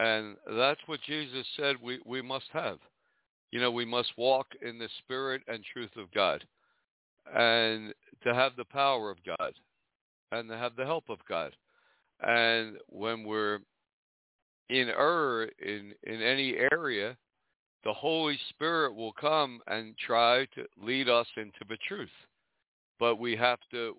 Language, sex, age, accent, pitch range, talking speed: English, male, 60-79, American, 105-130 Hz, 155 wpm